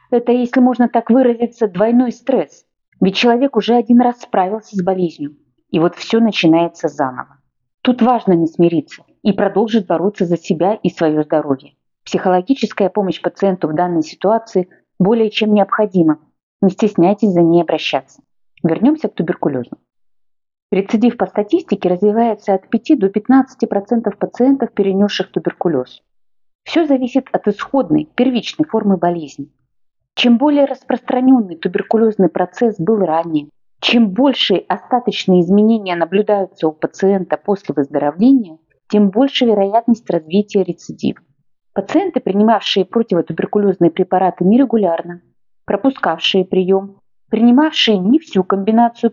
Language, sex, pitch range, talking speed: Russian, female, 180-235 Hz, 120 wpm